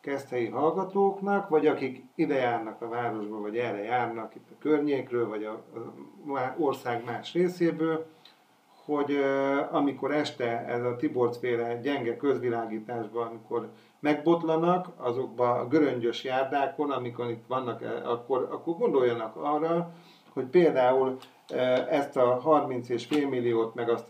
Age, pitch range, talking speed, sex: 40-59, 120-155 Hz, 125 wpm, male